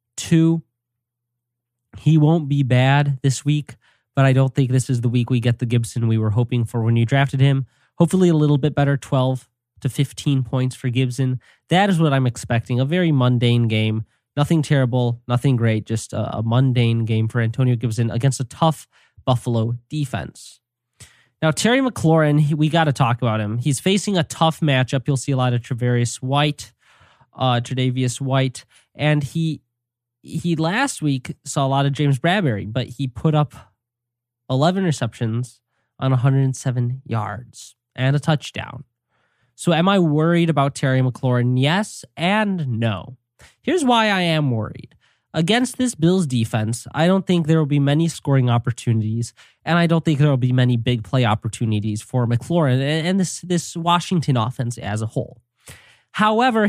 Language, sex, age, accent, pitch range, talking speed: English, male, 20-39, American, 120-155 Hz, 170 wpm